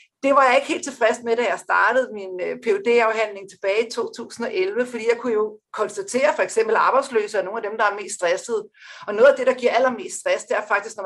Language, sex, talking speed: Danish, female, 240 wpm